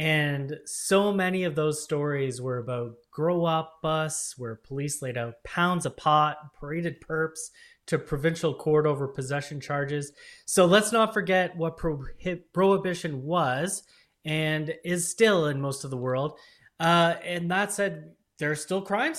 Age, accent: 30-49, American